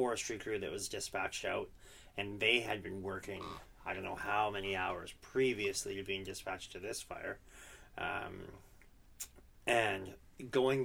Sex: male